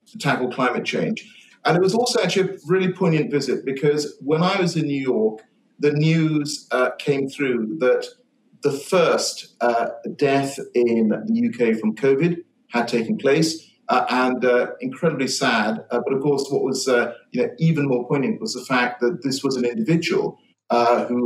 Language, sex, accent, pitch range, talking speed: English, male, British, 125-185 Hz, 185 wpm